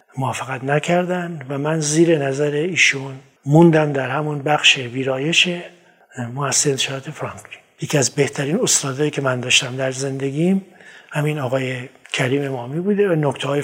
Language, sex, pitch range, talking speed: Persian, male, 135-175 Hz, 140 wpm